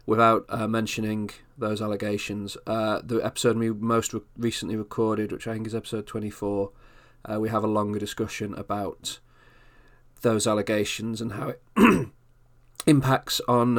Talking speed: 140 wpm